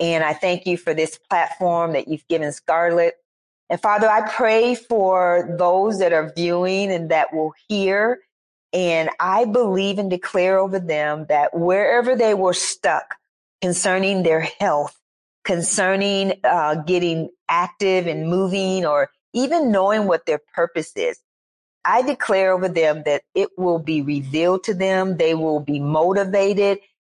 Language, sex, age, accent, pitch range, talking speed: English, female, 40-59, American, 165-210 Hz, 150 wpm